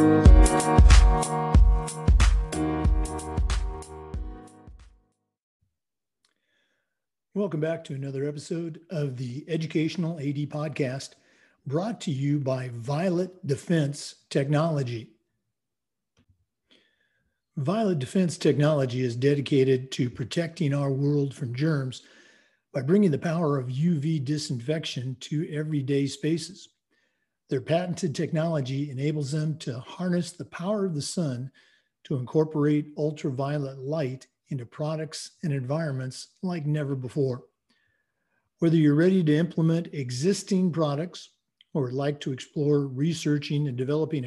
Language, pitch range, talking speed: English, 135-165 Hz, 105 wpm